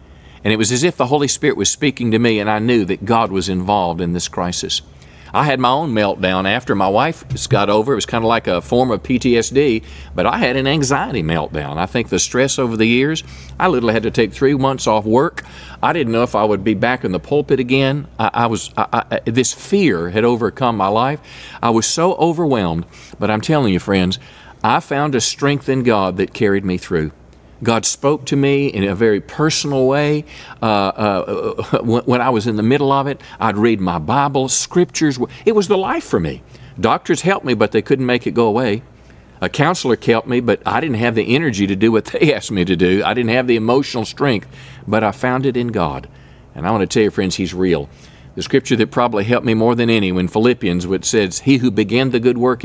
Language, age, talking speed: English, 40-59, 230 wpm